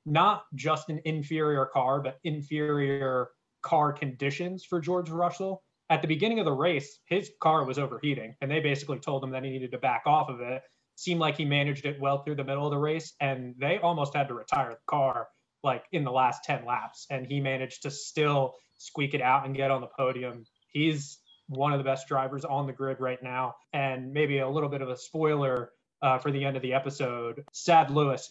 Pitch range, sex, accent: 125-150 Hz, male, American